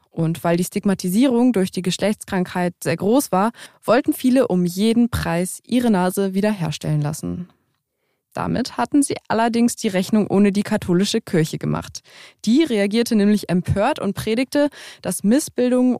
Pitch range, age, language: 175-225 Hz, 20-39, German